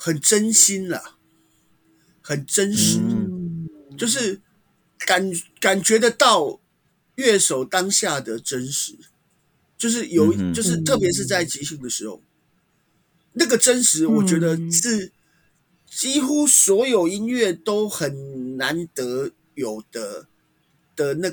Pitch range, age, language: 155-220 Hz, 50-69, Chinese